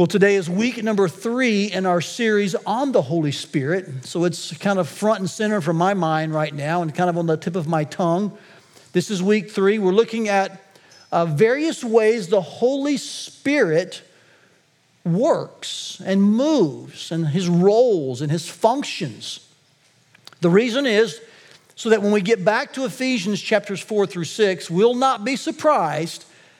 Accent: American